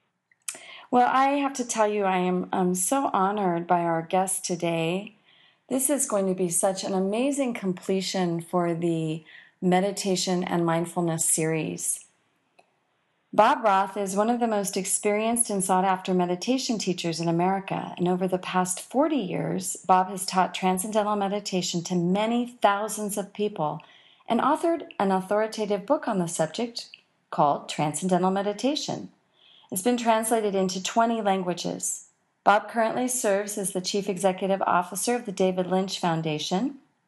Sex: female